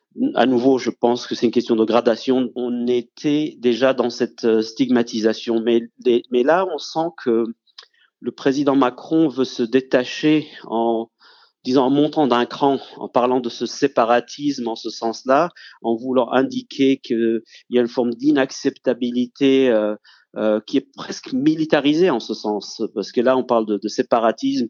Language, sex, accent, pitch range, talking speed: French, male, French, 115-140 Hz, 165 wpm